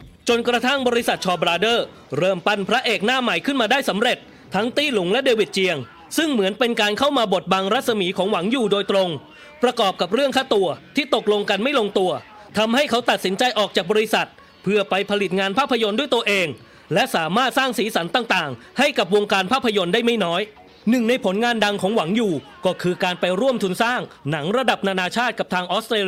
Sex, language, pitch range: male, English, 195-240 Hz